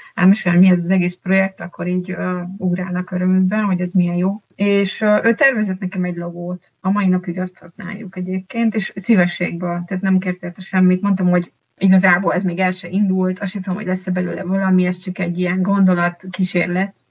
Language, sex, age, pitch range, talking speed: Hungarian, female, 30-49, 180-195 Hz, 195 wpm